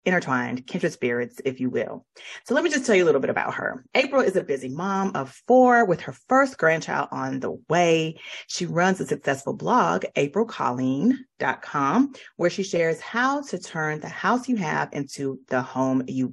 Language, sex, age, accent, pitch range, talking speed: English, female, 30-49, American, 135-215 Hz, 185 wpm